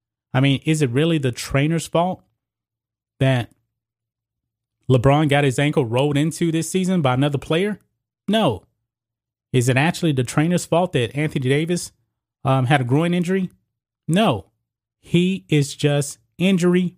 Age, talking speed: 30-49, 140 wpm